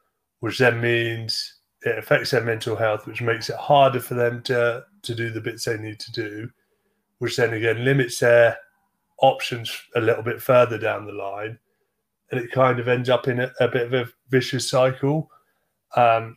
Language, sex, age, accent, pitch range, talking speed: English, male, 30-49, British, 115-130 Hz, 185 wpm